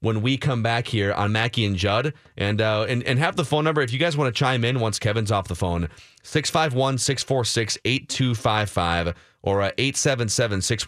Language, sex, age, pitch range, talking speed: English, male, 30-49, 110-160 Hz, 225 wpm